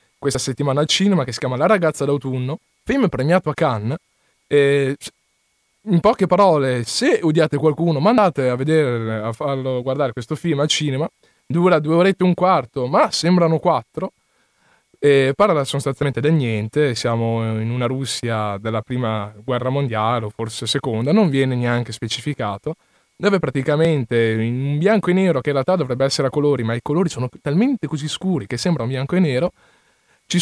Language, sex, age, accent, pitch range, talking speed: Italian, male, 20-39, native, 125-165 Hz, 170 wpm